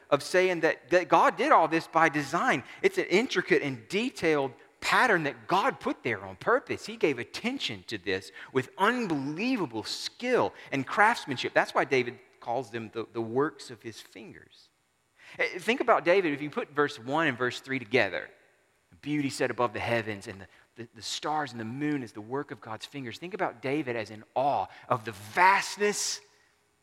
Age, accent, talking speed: 40-59, American, 185 wpm